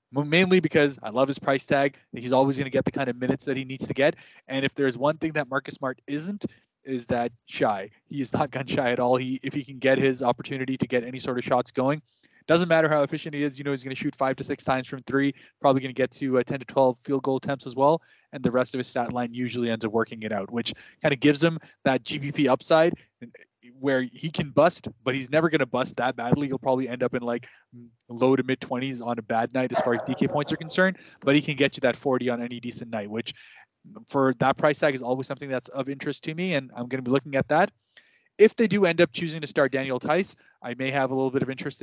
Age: 20-39